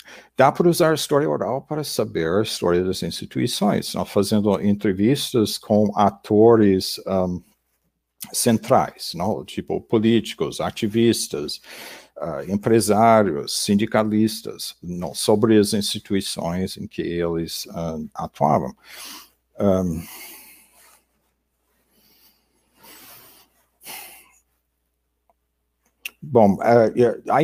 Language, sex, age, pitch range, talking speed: Portuguese, male, 50-69, 85-110 Hz, 85 wpm